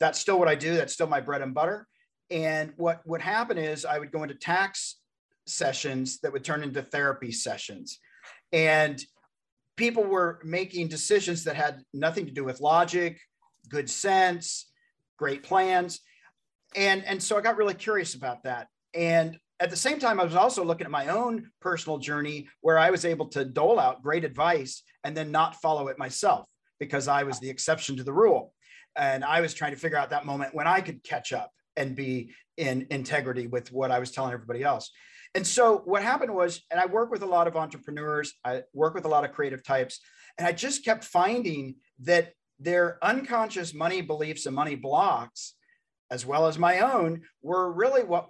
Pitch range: 145-185 Hz